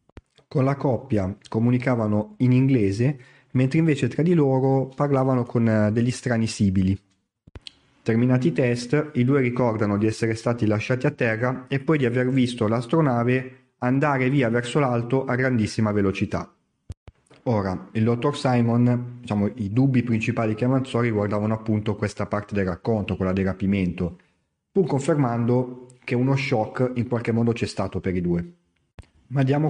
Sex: male